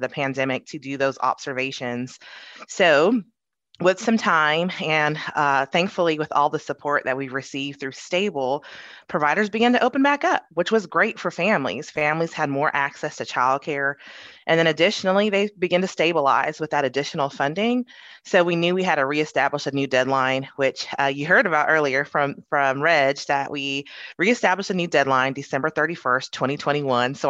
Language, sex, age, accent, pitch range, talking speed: English, female, 20-39, American, 135-175 Hz, 175 wpm